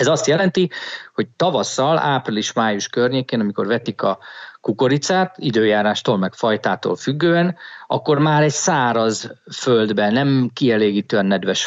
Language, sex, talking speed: Hungarian, male, 120 wpm